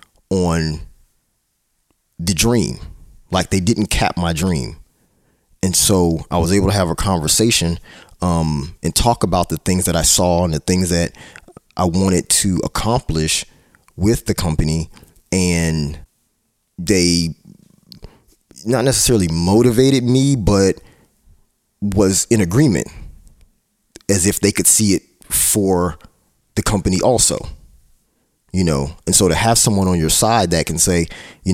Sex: male